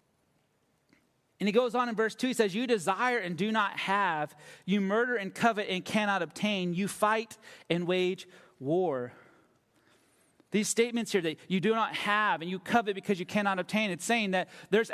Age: 30-49